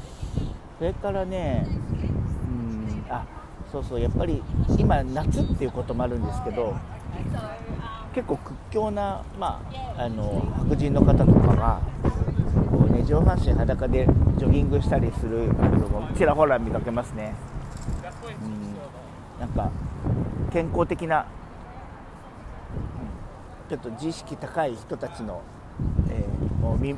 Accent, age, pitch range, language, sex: native, 50-69, 95-135 Hz, Japanese, male